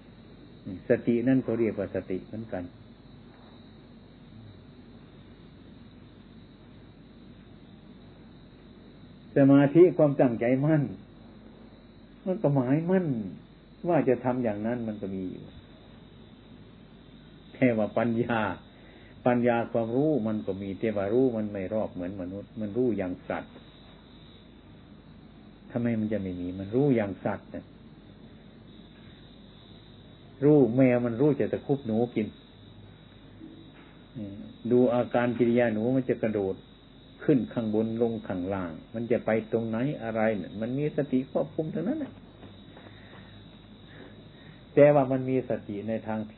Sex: male